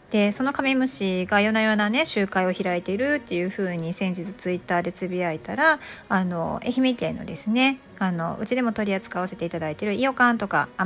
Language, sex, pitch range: Japanese, female, 180-245 Hz